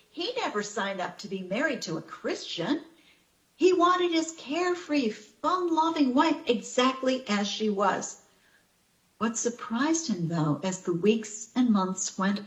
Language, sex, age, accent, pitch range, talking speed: English, female, 60-79, American, 200-275 Hz, 145 wpm